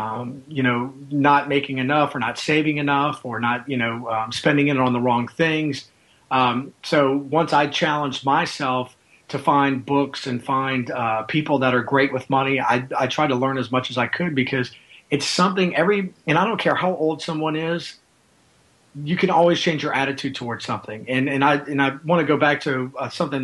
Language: English